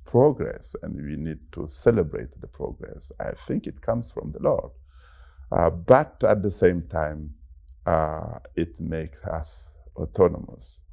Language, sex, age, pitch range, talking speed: English, male, 50-69, 70-85 Hz, 145 wpm